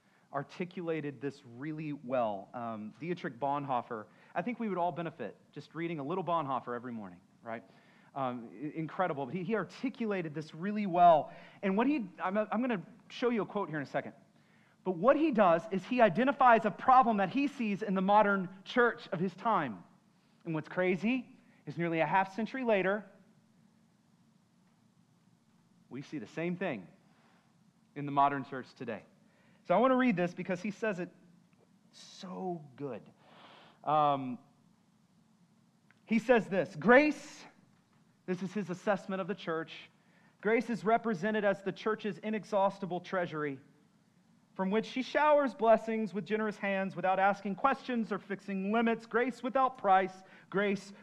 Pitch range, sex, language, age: 175-215 Hz, male, English, 40-59